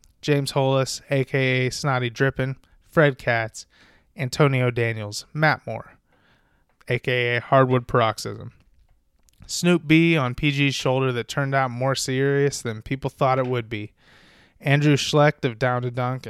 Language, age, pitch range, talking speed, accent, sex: English, 20-39, 120-140 Hz, 135 wpm, American, male